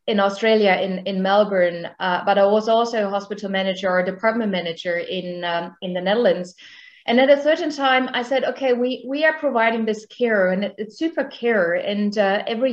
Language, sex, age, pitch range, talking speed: English, female, 30-49, 190-235 Hz, 200 wpm